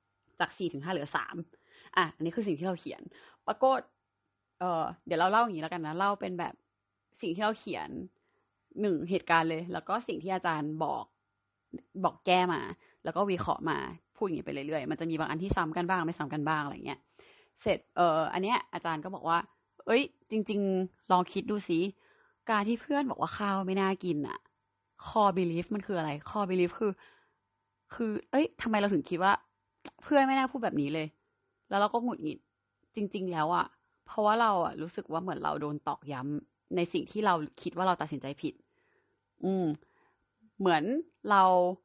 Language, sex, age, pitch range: Thai, female, 20-39, 165-215 Hz